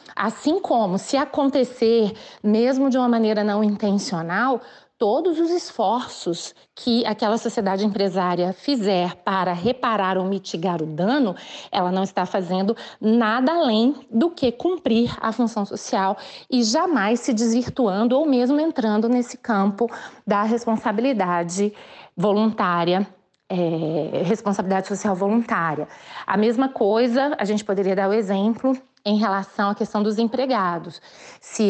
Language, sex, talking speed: Portuguese, female, 125 wpm